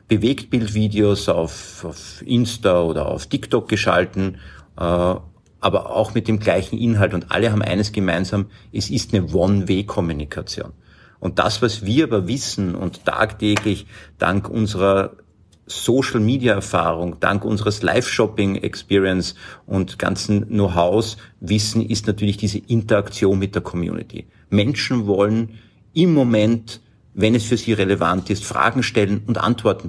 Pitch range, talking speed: 95-110 Hz, 120 wpm